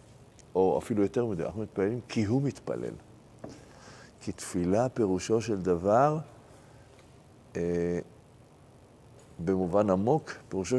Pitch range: 90-145 Hz